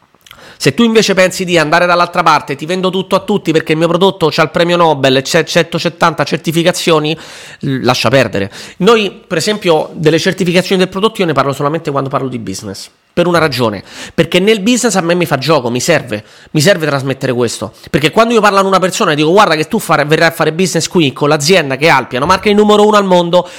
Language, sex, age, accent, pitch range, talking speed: Italian, male, 30-49, native, 150-195 Hz, 220 wpm